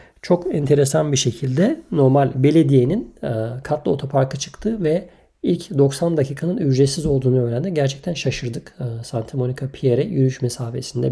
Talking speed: 135 wpm